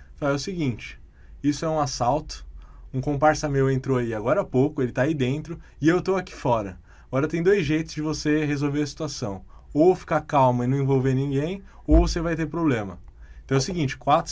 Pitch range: 115-150 Hz